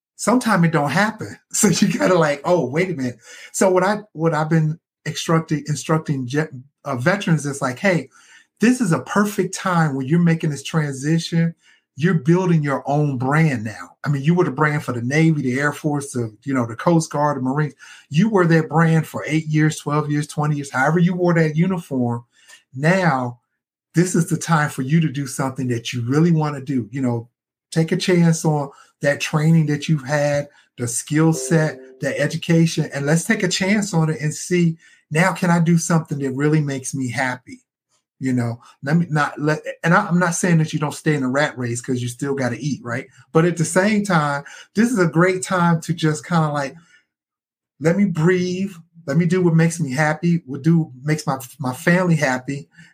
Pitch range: 140-170 Hz